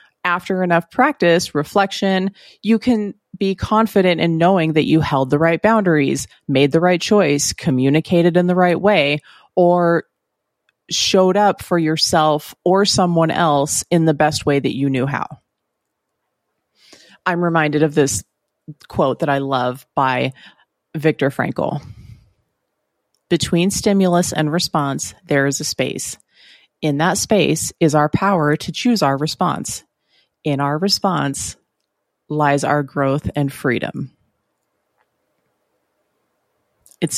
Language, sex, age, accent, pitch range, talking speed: English, female, 30-49, American, 140-175 Hz, 130 wpm